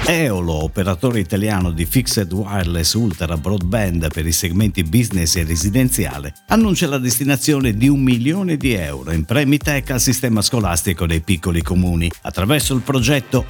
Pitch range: 90-135 Hz